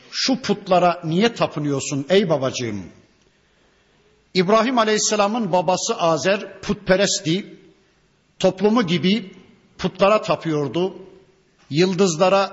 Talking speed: 75 wpm